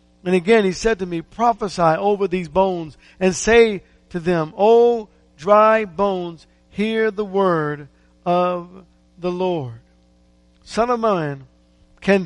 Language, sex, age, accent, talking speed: English, male, 50-69, American, 130 wpm